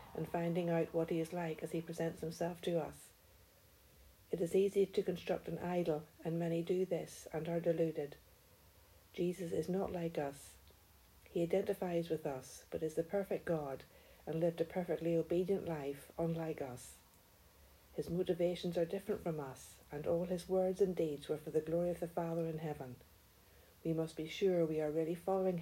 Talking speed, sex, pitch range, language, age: 185 wpm, female, 150-175 Hz, English, 60-79